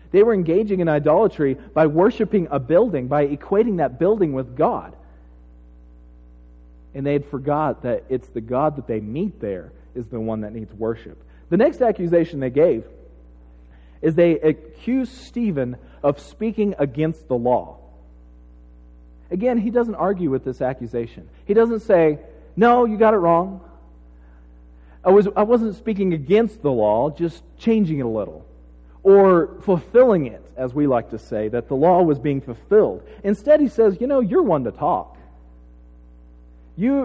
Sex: male